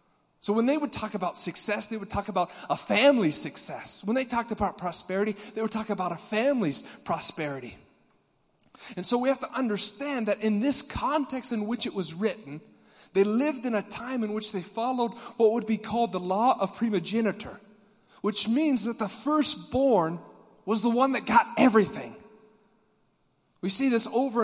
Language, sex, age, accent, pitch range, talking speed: English, male, 30-49, American, 205-260 Hz, 180 wpm